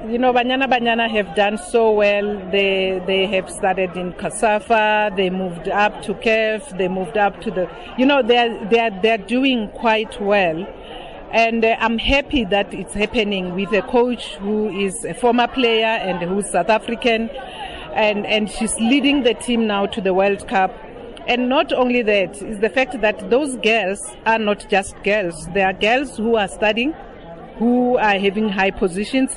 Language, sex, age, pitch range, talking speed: English, female, 50-69, 190-235 Hz, 180 wpm